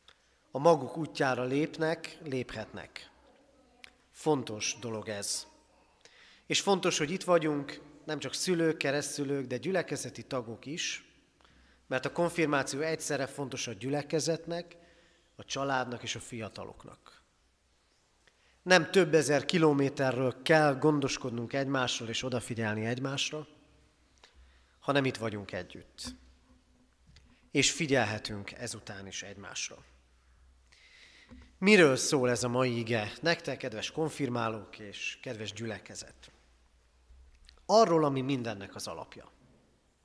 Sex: male